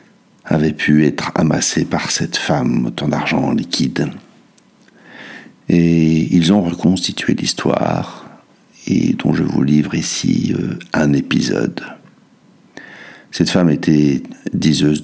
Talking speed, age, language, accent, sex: 110 wpm, 60-79, French, French, male